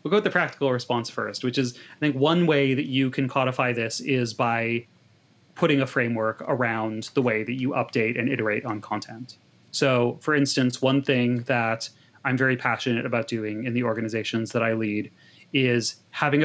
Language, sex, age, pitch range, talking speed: English, male, 30-49, 115-135 Hz, 190 wpm